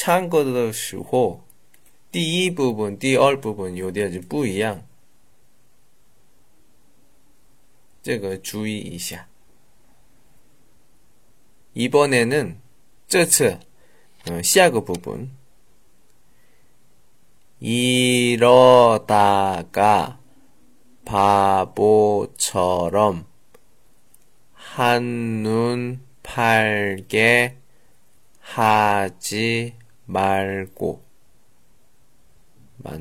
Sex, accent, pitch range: male, Korean, 95-120 Hz